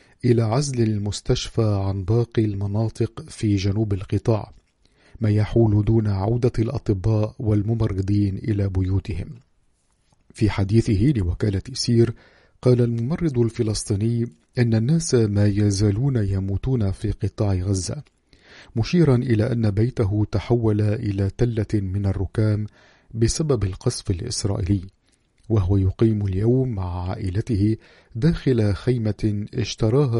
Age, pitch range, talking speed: 50-69, 100-120 Hz, 105 wpm